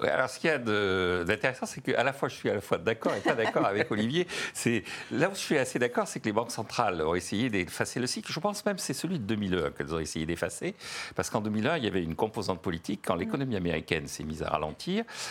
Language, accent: French, French